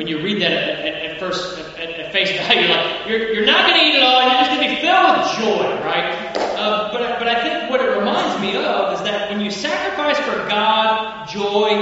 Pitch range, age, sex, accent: 195-260 Hz, 30-49, male, American